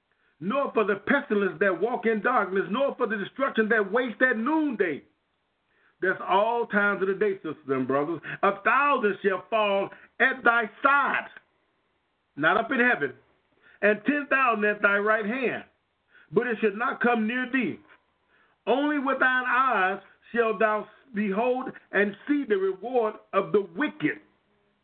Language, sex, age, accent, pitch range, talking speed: English, male, 50-69, American, 205-260 Hz, 155 wpm